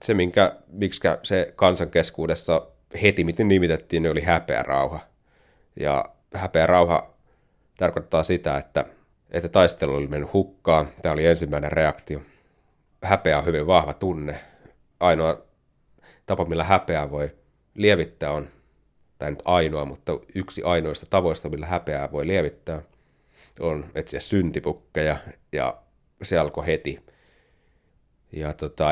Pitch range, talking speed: 75-95 Hz, 115 wpm